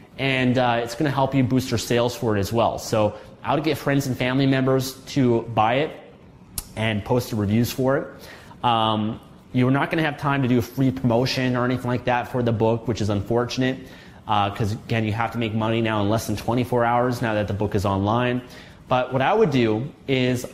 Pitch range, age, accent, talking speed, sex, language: 115-140 Hz, 30-49, American, 230 wpm, male, English